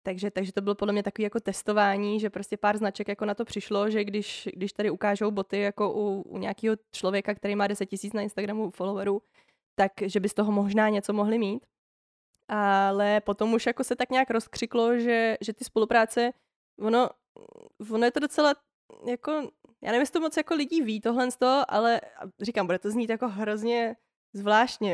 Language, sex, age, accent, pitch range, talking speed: Czech, female, 20-39, native, 200-225 Hz, 190 wpm